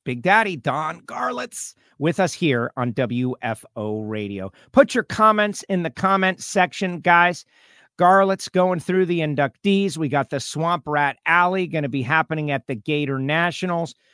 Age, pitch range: 50-69, 140-180 Hz